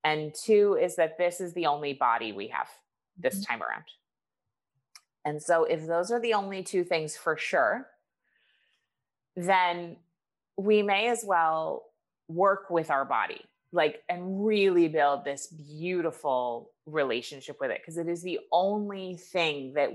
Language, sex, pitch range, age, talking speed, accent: English, female, 155-205 Hz, 30-49, 150 wpm, American